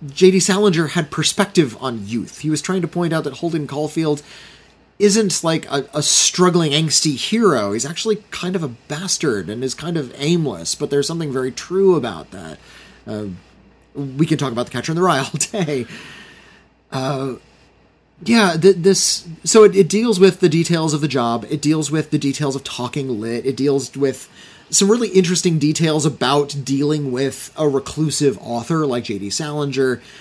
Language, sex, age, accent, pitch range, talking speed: English, male, 30-49, American, 125-170 Hz, 175 wpm